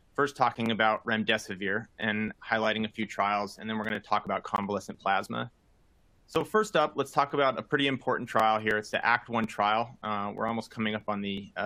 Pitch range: 105-125 Hz